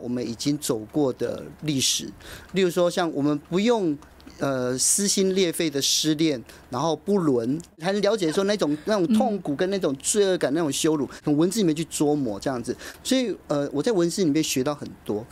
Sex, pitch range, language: male, 130-170 Hz, Chinese